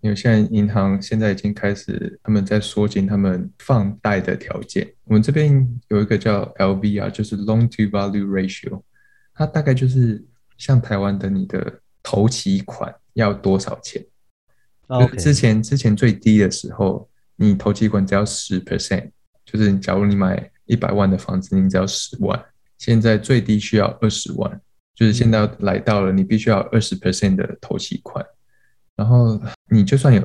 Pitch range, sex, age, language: 100-120 Hz, male, 20-39, Chinese